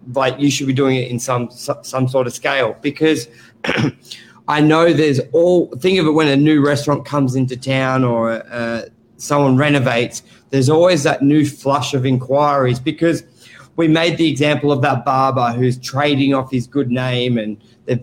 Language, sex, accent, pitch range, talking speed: English, male, Australian, 125-150 Hz, 180 wpm